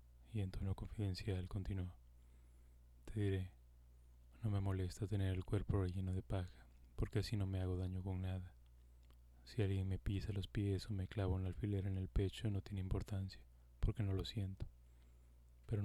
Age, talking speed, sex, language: 20-39, 175 wpm, male, Spanish